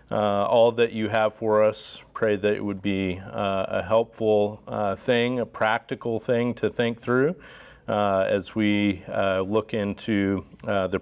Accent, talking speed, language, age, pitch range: American, 170 wpm, English, 40-59, 100-115 Hz